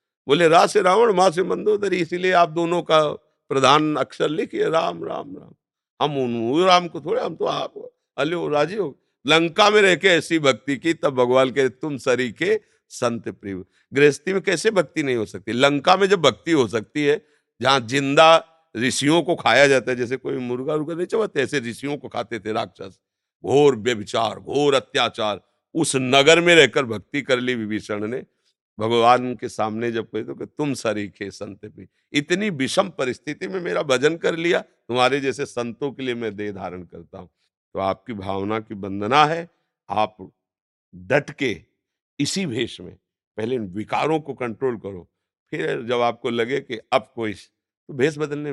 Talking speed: 180 wpm